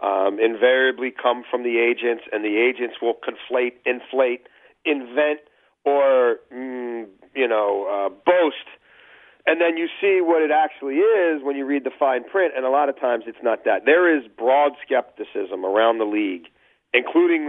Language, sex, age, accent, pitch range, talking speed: English, male, 40-59, American, 120-150 Hz, 170 wpm